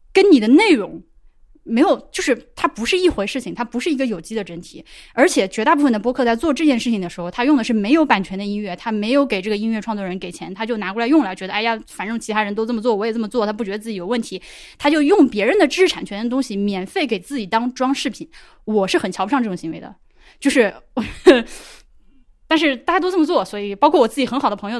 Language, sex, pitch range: Chinese, female, 200-270 Hz